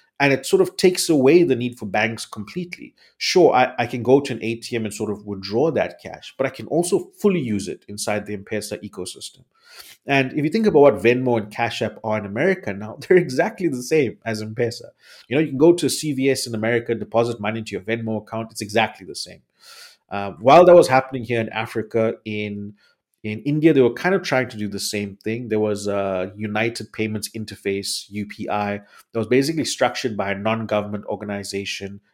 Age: 30-49